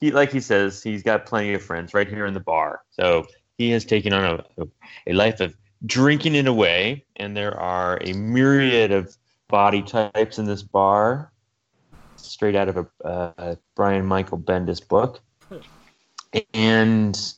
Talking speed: 170 wpm